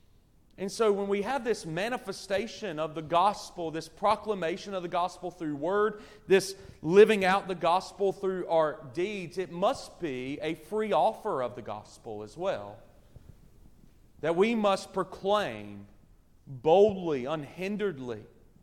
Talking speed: 135 wpm